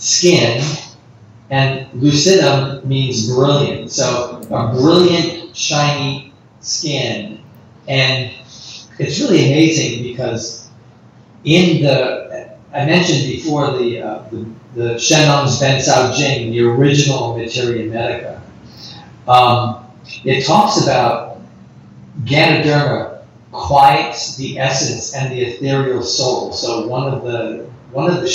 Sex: male